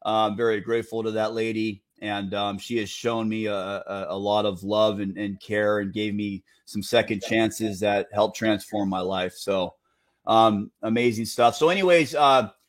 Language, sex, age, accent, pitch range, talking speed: English, male, 30-49, American, 110-140 Hz, 190 wpm